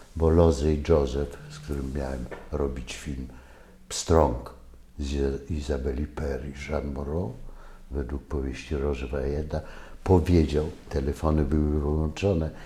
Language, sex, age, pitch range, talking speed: English, male, 60-79, 70-80 Hz, 105 wpm